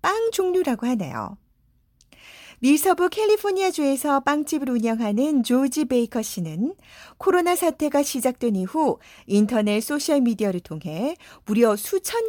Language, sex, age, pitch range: Korean, female, 40-59, 195-315 Hz